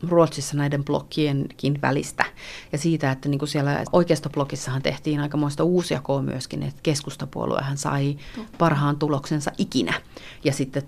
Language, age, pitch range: Finnish, 30-49, 140-155 Hz